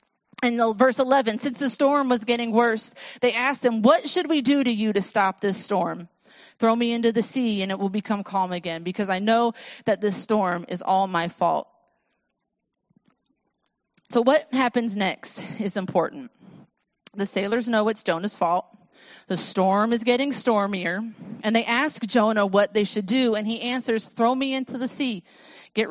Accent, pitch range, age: American, 205-255 Hz, 40-59